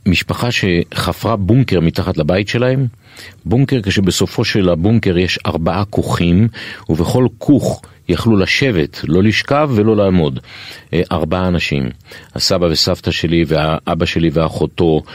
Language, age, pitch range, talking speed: Hebrew, 50-69, 85-110 Hz, 115 wpm